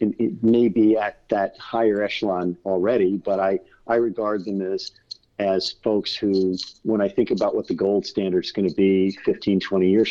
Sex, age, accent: male, 50-69, American